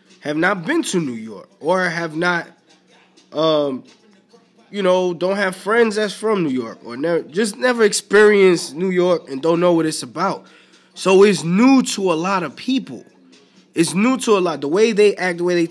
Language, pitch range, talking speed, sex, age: English, 130-200 Hz, 200 wpm, male, 20-39